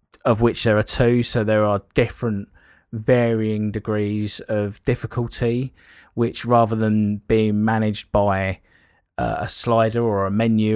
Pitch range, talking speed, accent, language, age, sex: 105-120 Hz, 140 wpm, British, English, 20-39, male